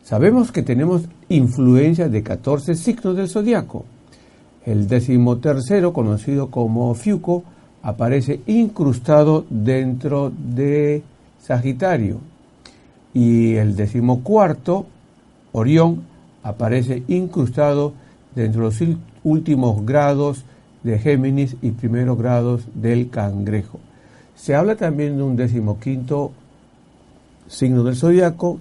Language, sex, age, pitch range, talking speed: Spanish, male, 60-79, 120-165 Hz, 95 wpm